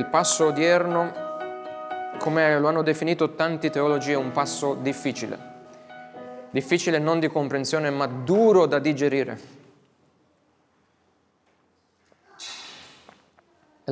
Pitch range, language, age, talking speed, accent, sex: 130-155 Hz, Italian, 30-49, 95 wpm, native, male